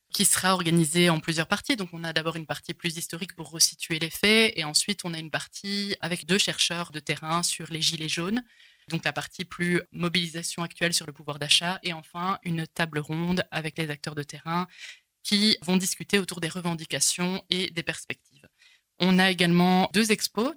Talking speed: 195 wpm